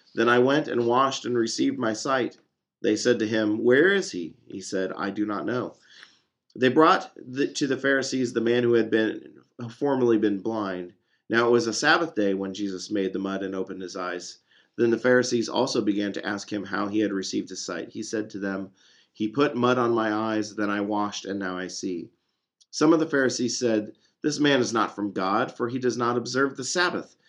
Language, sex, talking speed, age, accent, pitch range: English, male, 220 wpm, 40-59, American, 100-125 Hz